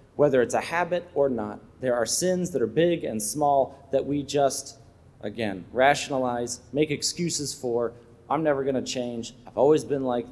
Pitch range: 115-150 Hz